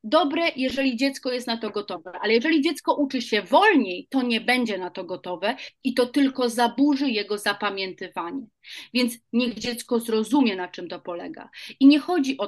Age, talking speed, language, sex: 30-49, 180 wpm, Polish, female